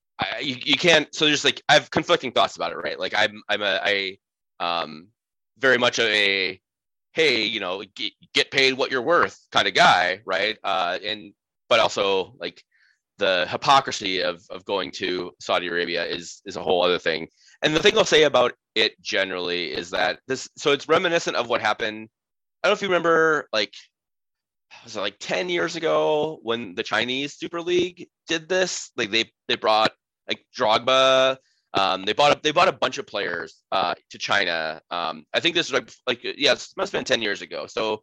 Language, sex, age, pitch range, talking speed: English, male, 20-39, 95-145 Hz, 200 wpm